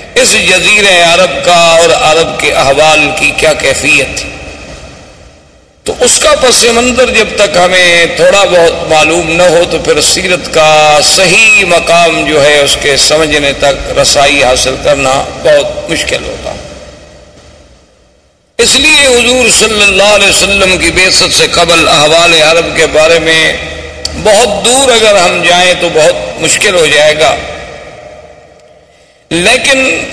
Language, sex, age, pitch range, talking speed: Urdu, male, 50-69, 165-235 Hz, 140 wpm